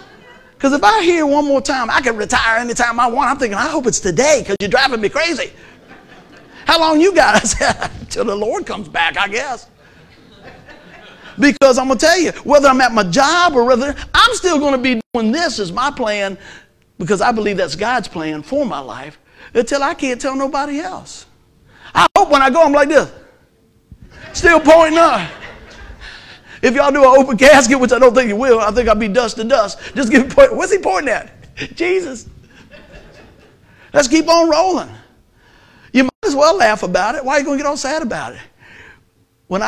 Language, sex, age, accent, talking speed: English, male, 50-69, American, 190 wpm